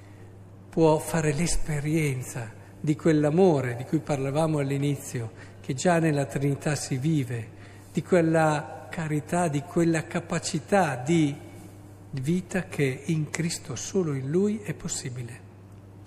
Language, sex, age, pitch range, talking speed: Italian, male, 50-69, 115-170 Hz, 115 wpm